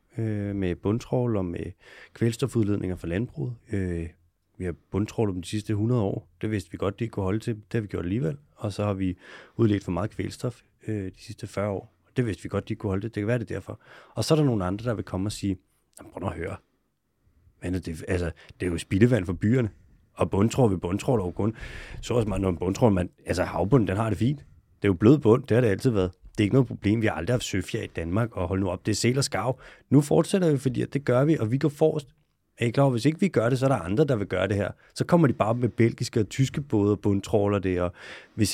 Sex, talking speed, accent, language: male, 270 wpm, native, Danish